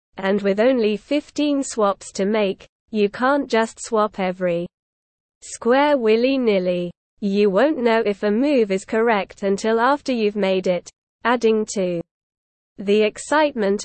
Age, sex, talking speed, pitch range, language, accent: 20-39, female, 135 wpm, 195-250 Hz, English, British